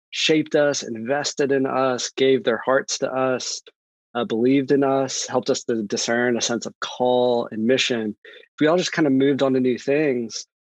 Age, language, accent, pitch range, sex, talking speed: 20-39, English, American, 115-135 Hz, male, 200 wpm